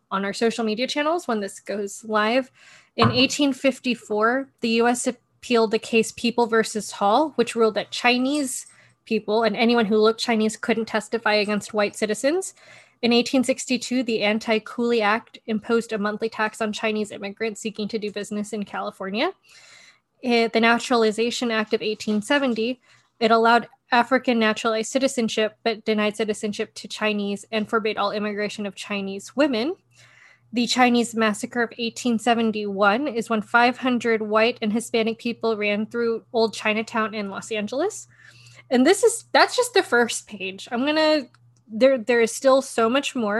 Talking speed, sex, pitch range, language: 155 wpm, female, 215-240 Hz, English